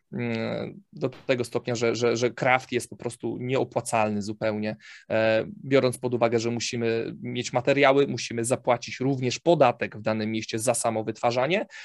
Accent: native